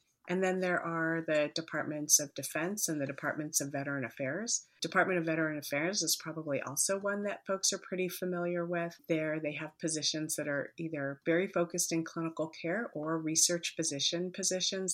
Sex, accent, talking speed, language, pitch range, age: female, American, 175 wpm, English, 145-175 Hz, 30-49